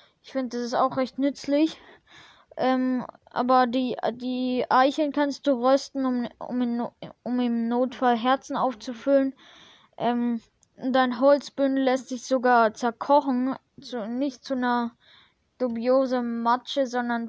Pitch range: 235-265 Hz